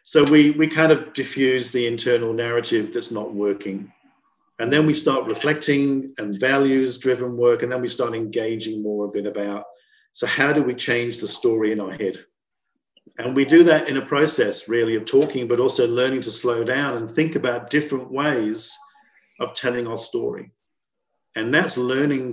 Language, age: English, 50-69